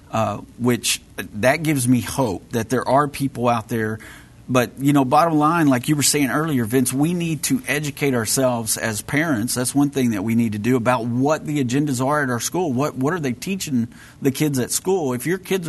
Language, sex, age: English, male, 40-59